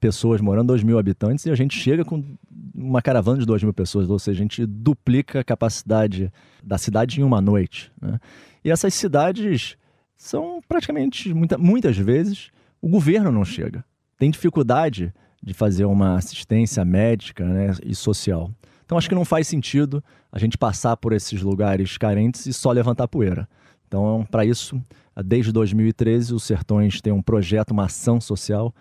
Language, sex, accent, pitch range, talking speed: Portuguese, male, Brazilian, 105-140 Hz, 170 wpm